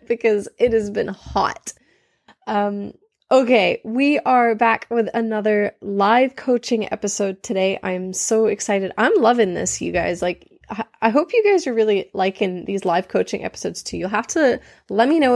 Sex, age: female, 20-39